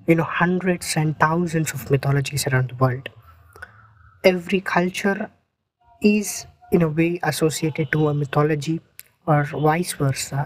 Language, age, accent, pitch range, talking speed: English, 20-39, Indian, 135-180 Hz, 130 wpm